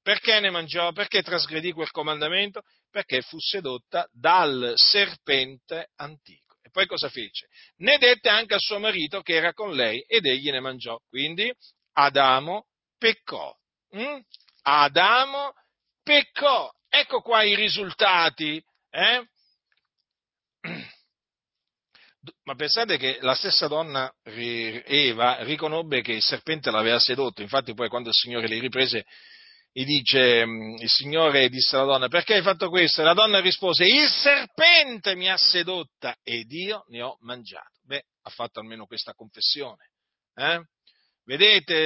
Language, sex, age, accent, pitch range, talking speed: Italian, male, 40-59, native, 135-205 Hz, 135 wpm